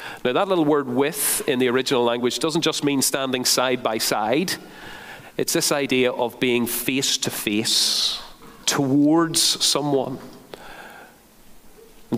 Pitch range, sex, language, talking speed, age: 105-140 Hz, male, English, 135 wpm, 40-59